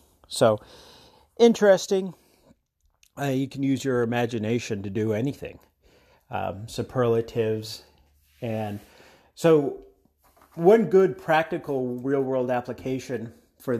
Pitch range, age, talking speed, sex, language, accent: 110-135 Hz, 40-59, 90 wpm, male, English, American